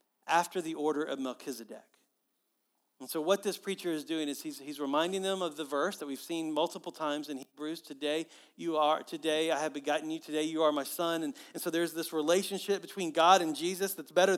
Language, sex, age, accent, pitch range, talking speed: English, male, 40-59, American, 160-240 Hz, 215 wpm